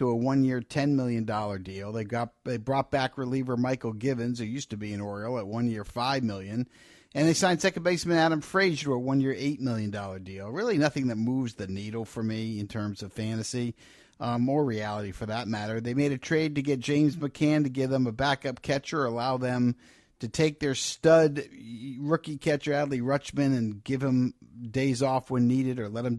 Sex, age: male, 50-69